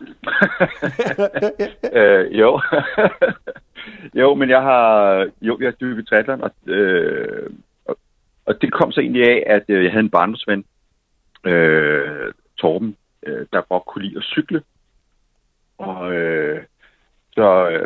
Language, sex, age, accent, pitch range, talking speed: Danish, male, 60-79, native, 90-130 Hz, 125 wpm